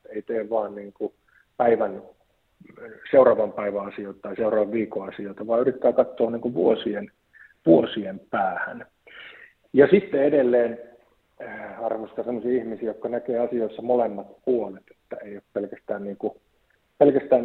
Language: Finnish